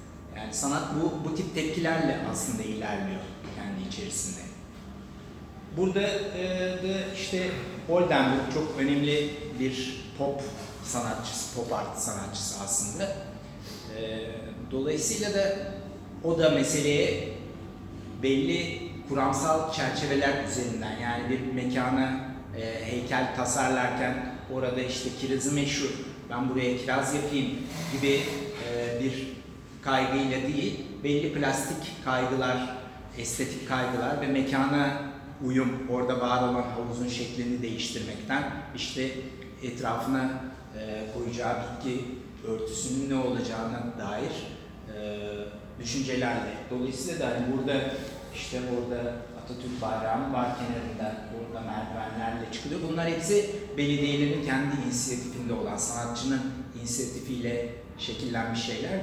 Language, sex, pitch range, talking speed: Turkish, male, 120-140 Hz, 105 wpm